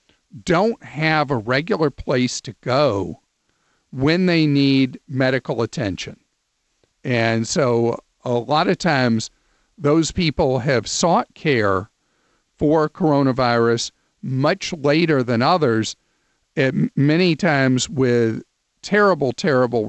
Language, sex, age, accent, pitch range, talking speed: English, male, 50-69, American, 125-155 Hz, 105 wpm